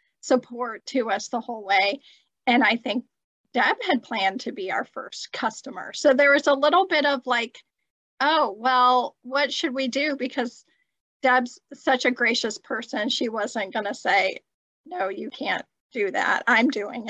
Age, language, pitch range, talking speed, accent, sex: 40-59, English, 235-280 Hz, 170 wpm, American, female